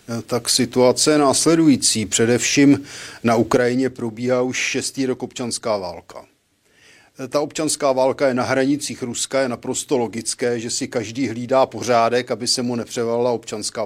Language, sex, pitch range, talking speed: Czech, male, 115-130 Hz, 145 wpm